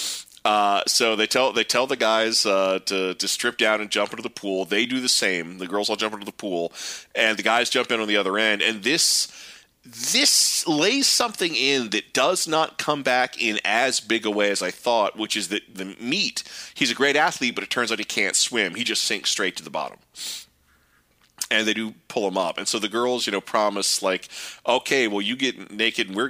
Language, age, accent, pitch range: English, 30-49, American, 100-120 Hz